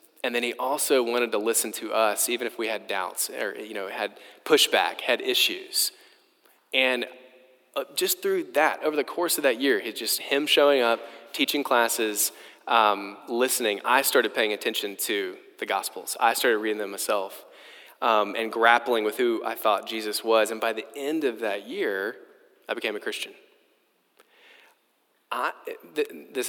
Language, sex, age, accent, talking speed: English, male, 20-39, American, 170 wpm